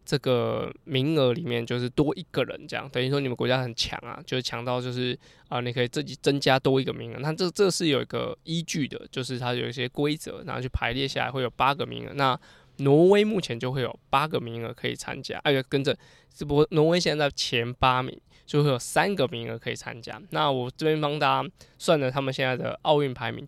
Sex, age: male, 20-39